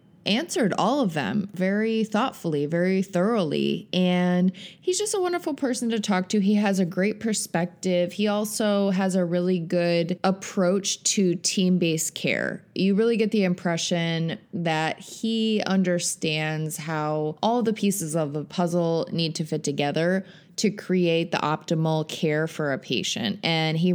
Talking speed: 155 wpm